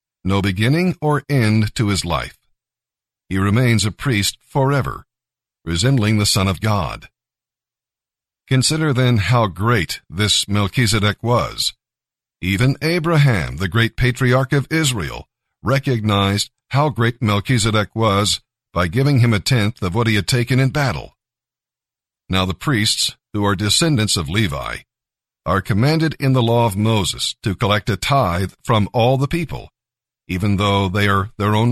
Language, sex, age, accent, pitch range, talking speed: English, male, 50-69, American, 100-130 Hz, 145 wpm